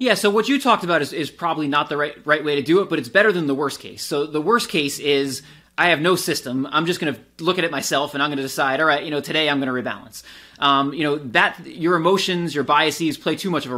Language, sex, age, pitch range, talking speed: English, male, 20-39, 140-175 Hz, 295 wpm